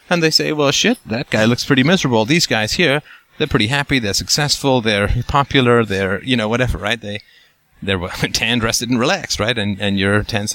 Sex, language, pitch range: male, English, 105-125 Hz